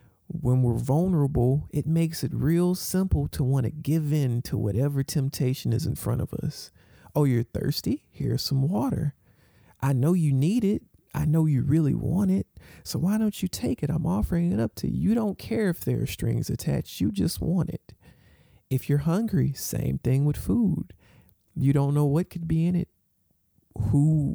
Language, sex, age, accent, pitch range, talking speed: English, male, 40-59, American, 125-160 Hz, 190 wpm